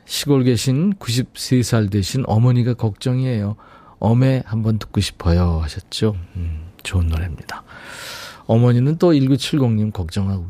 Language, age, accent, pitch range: Korean, 40-59, native, 100-140 Hz